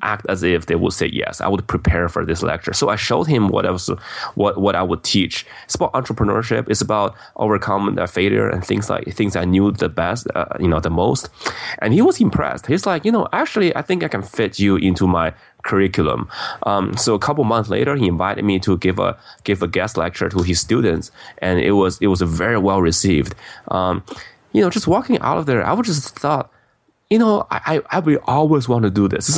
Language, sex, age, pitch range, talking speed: English, male, 20-39, 90-110 Hz, 235 wpm